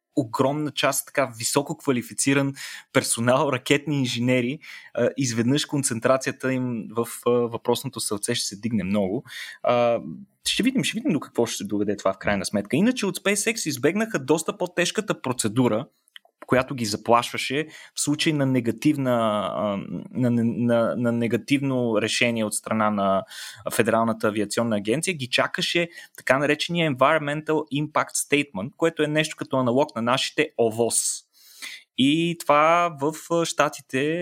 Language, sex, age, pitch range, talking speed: Bulgarian, male, 20-39, 120-155 Hz, 130 wpm